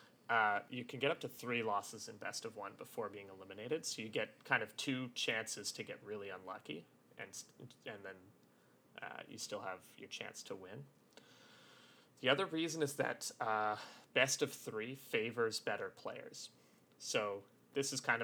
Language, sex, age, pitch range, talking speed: English, male, 30-49, 105-140 Hz, 175 wpm